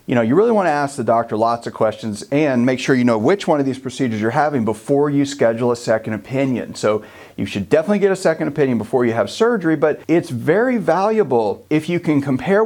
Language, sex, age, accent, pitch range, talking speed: English, male, 40-59, American, 120-160 Hz, 235 wpm